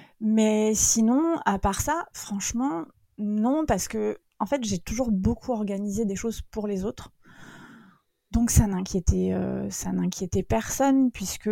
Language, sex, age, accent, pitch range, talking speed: French, female, 20-39, French, 190-220 Hz, 145 wpm